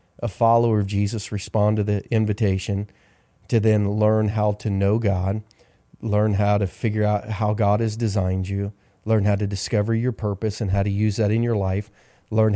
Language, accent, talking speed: English, American, 190 wpm